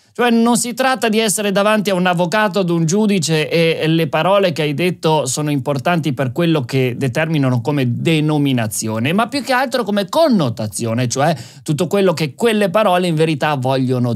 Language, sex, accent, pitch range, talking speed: Italian, male, native, 130-205 Hz, 180 wpm